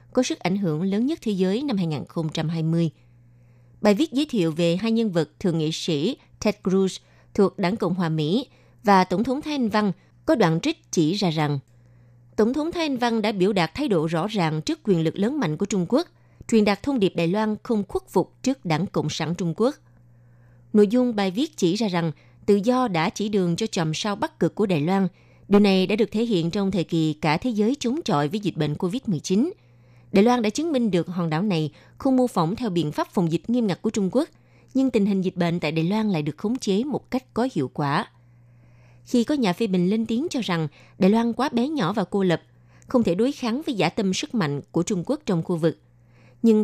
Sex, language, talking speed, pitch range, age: female, Vietnamese, 235 wpm, 160-225 Hz, 20-39